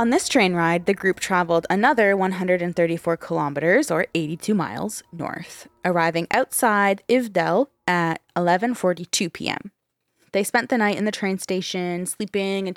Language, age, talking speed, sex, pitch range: English, 20-39, 140 wpm, female, 165-195 Hz